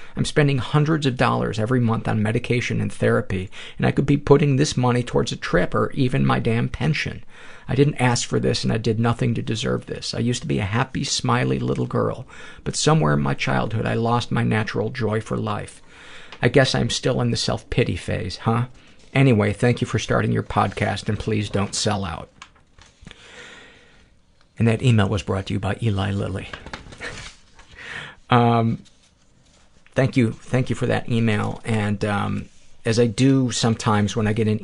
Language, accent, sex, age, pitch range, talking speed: English, American, male, 50-69, 100-120 Hz, 185 wpm